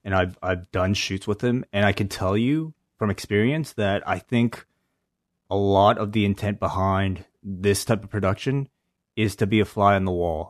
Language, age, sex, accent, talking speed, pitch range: English, 20-39, male, American, 200 wpm, 100-130 Hz